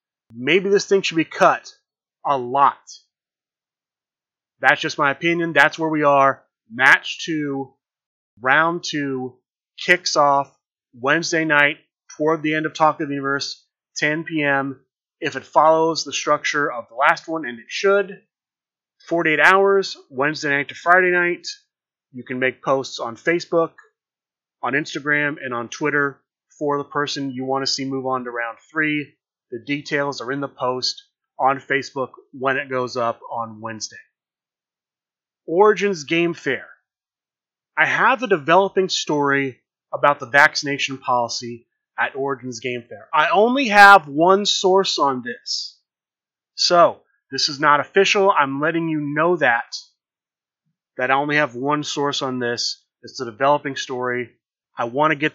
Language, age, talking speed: English, 30-49, 150 wpm